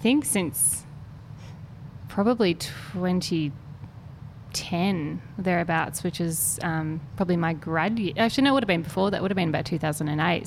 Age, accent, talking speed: 20-39, Australian, 160 wpm